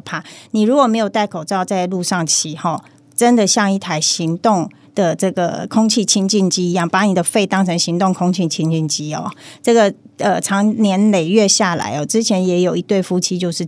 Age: 30-49